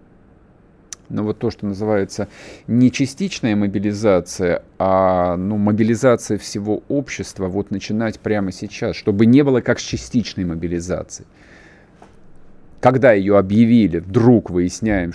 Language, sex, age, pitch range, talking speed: Russian, male, 40-59, 95-115 Hz, 115 wpm